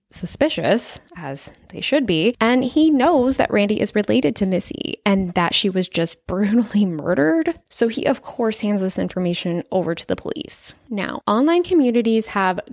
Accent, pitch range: American, 190-270 Hz